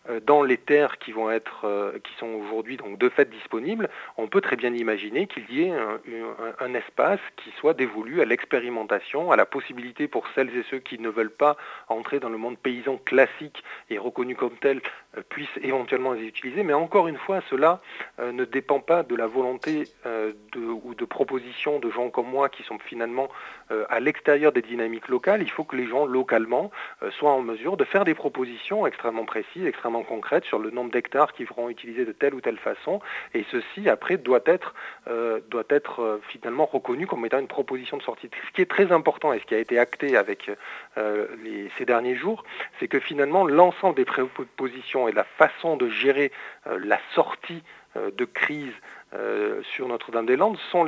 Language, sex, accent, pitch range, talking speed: French, male, French, 120-155 Hz, 195 wpm